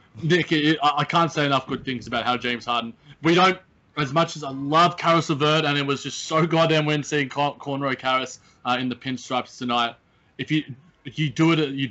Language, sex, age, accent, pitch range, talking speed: English, male, 20-39, Australian, 125-155 Hz, 215 wpm